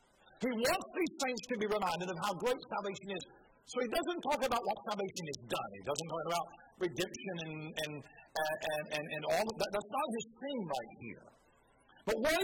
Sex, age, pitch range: male, 50-69, 195-295 Hz